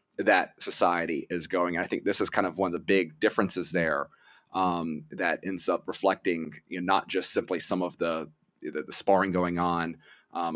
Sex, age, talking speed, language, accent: male, 30-49, 200 wpm, English, American